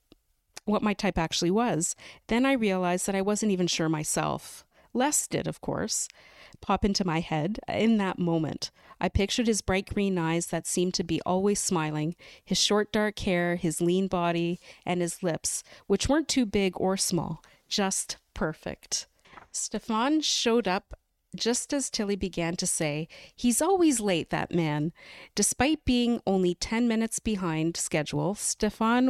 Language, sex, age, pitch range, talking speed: English, female, 40-59, 170-215 Hz, 160 wpm